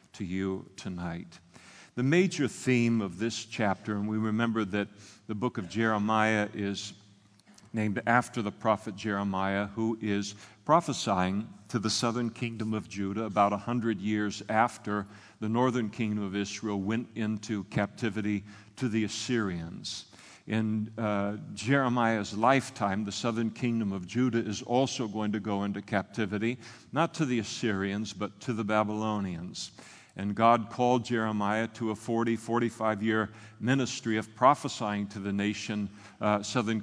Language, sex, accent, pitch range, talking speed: English, male, American, 100-115 Hz, 145 wpm